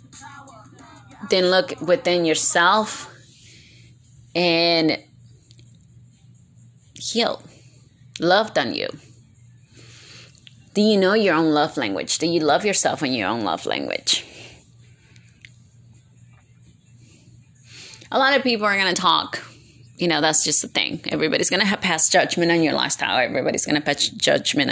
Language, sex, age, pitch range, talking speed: English, female, 30-49, 120-170 Hz, 125 wpm